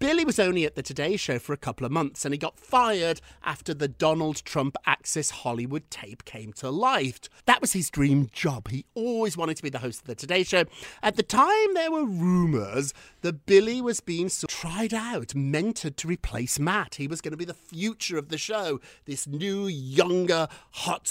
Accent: British